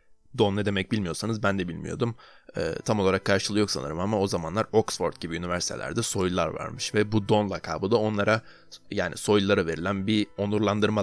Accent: native